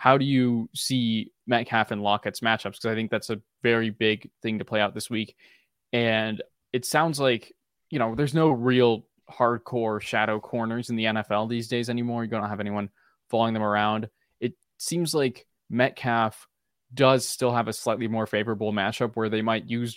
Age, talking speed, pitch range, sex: 20-39, 190 wpm, 110-120 Hz, male